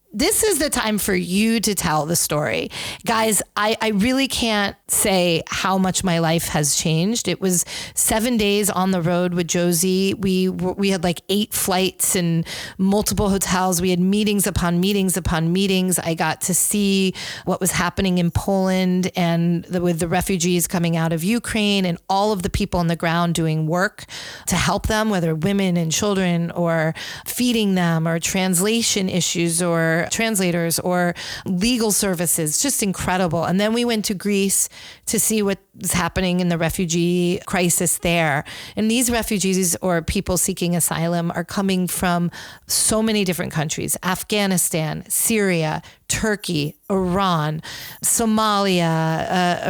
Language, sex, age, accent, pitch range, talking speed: English, female, 30-49, American, 170-205 Hz, 155 wpm